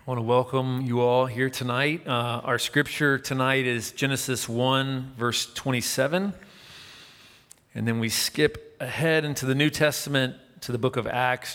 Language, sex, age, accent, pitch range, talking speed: English, male, 40-59, American, 105-135 Hz, 160 wpm